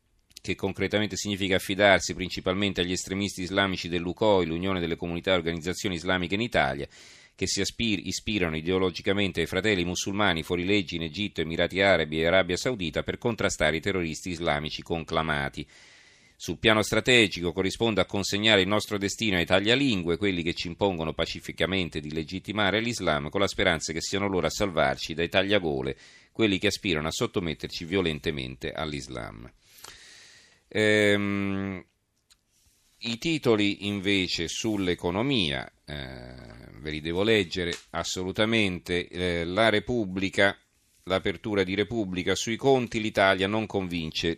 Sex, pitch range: male, 85-100 Hz